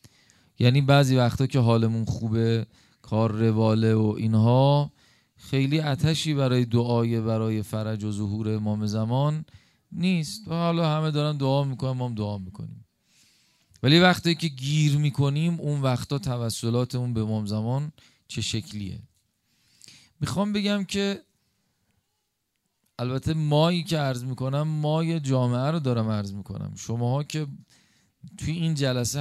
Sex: male